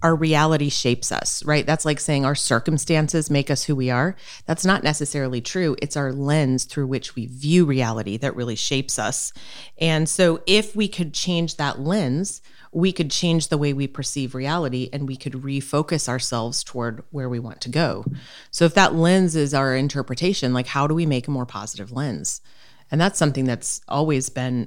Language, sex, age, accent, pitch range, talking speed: English, female, 30-49, American, 130-160 Hz, 195 wpm